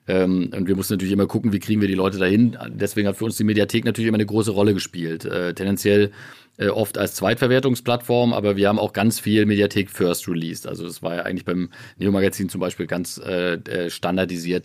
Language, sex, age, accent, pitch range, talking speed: German, male, 40-59, German, 90-110 Hz, 200 wpm